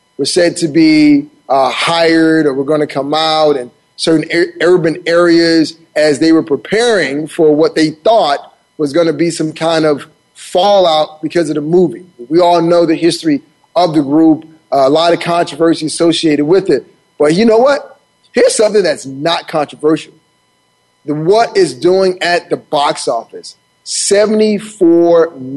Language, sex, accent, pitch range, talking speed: English, male, American, 150-175 Hz, 165 wpm